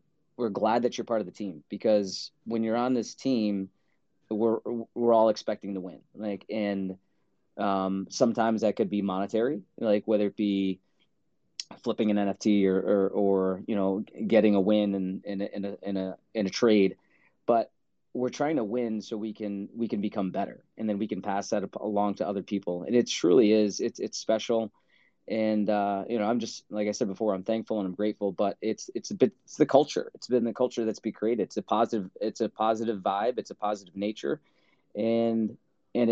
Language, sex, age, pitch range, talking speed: English, male, 20-39, 100-115 Hz, 210 wpm